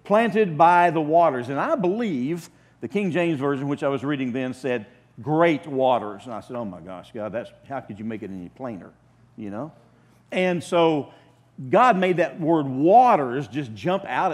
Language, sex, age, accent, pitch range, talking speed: English, male, 50-69, American, 120-165 Hz, 195 wpm